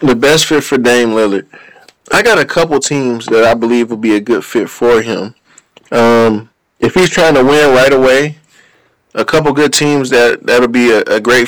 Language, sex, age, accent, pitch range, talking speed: English, male, 20-39, American, 120-140 Hz, 205 wpm